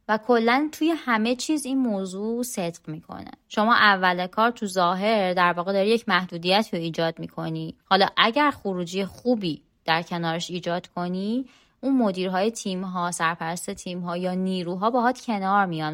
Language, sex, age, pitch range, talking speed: Persian, female, 20-39, 180-225 Hz, 155 wpm